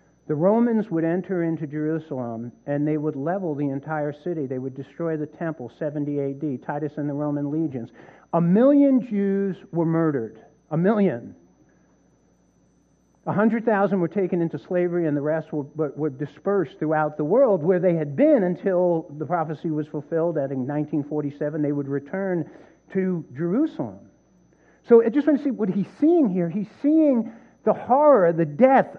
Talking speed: 170 wpm